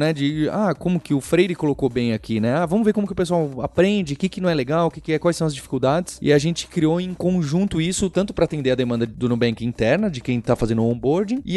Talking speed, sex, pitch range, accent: 280 wpm, male, 115-170 Hz, Brazilian